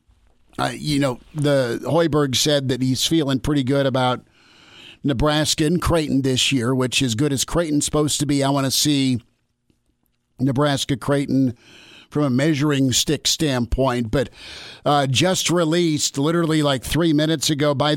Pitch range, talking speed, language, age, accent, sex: 135-160 Hz, 155 wpm, English, 50-69, American, male